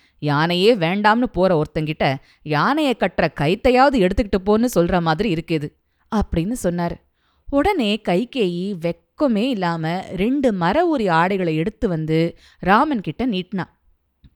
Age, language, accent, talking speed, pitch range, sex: 20-39, Tamil, native, 110 wpm, 175-255 Hz, female